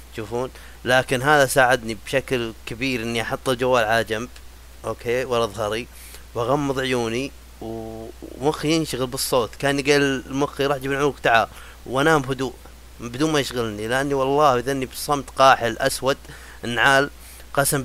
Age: 30-49